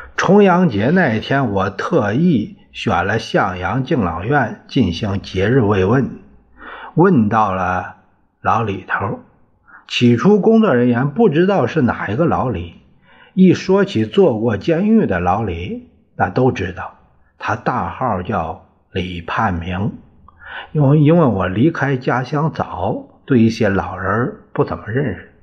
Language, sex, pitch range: Chinese, male, 95-130 Hz